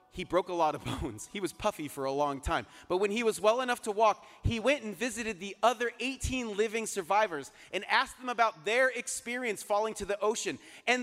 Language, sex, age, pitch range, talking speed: English, male, 30-49, 145-220 Hz, 225 wpm